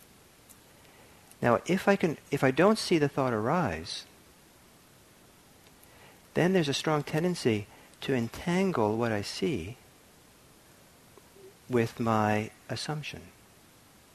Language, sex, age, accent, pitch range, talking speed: English, male, 50-69, American, 110-150 Hz, 100 wpm